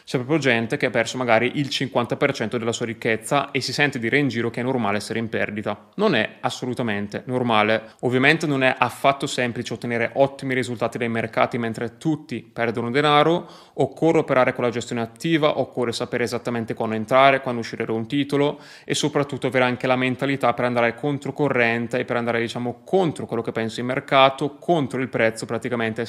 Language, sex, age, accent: Italian, male, 20-39, native